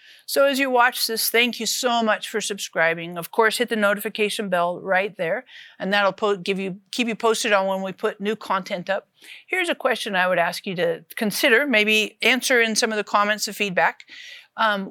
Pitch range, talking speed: 200-275 Hz, 215 wpm